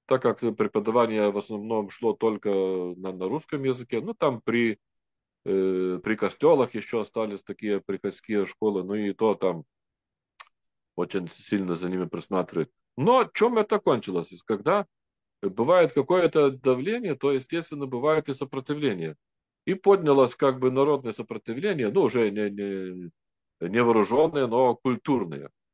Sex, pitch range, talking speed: male, 105-140 Hz, 135 wpm